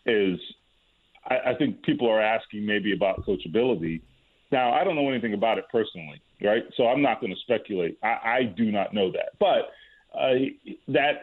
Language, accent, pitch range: English, American, 125-180 Hz